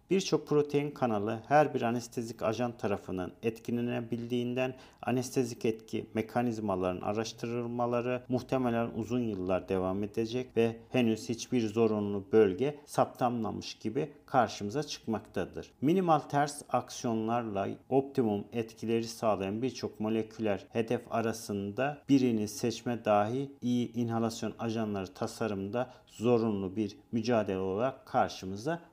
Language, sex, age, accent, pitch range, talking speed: Turkish, male, 50-69, native, 110-125 Hz, 100 wpm